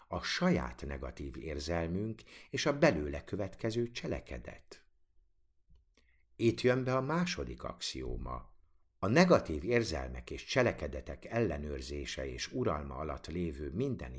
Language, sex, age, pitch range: Hungarian, male, 60-79, 70-110 Hz